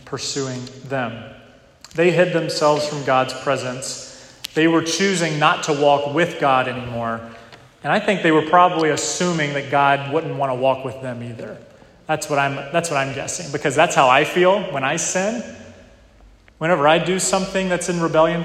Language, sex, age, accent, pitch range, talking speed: English, male, 30-49, American, 125-155 Hz, 180 wpm